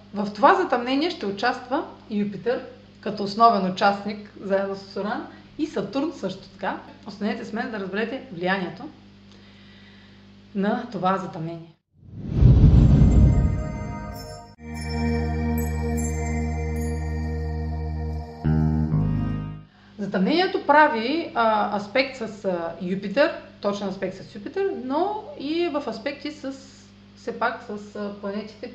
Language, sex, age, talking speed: Bulgarian, female, 30-49, 90 wpm